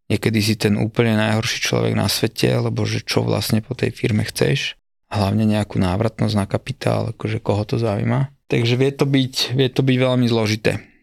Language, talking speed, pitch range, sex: Slovak, 175 wpm, 110-125 Hz, male